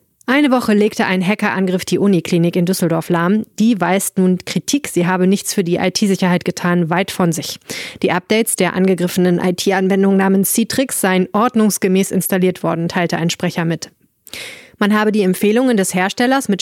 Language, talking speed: German, 170 wpm